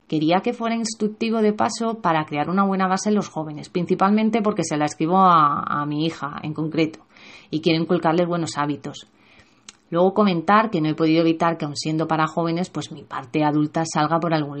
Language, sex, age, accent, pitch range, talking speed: Spanish, female, 30-49, Spanish, 150-180 Hz, 200 wpm